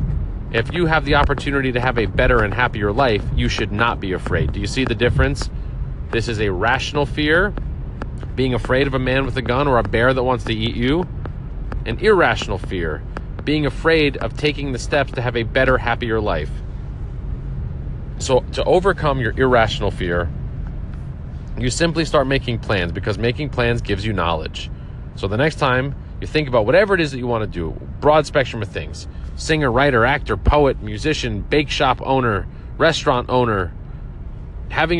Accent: American